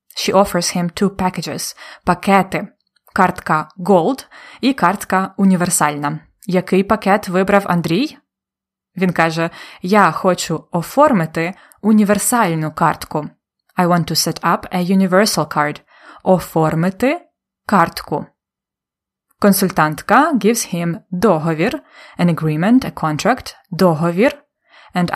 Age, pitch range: 20-39, 165-205 Hz